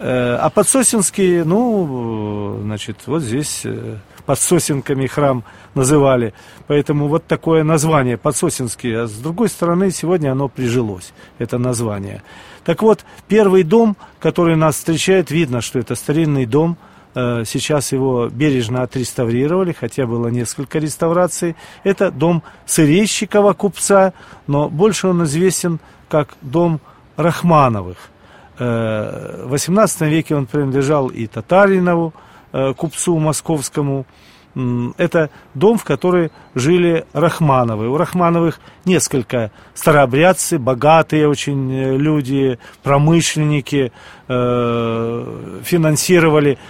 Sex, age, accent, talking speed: male, 40-59, native, 100 wpm